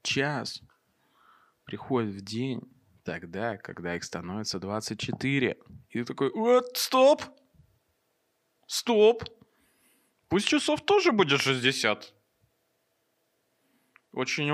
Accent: native